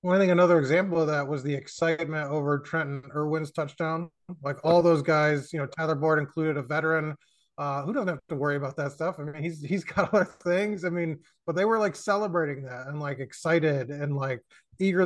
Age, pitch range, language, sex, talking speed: 20-39, 150-180 Hz, English, male, 220 wpm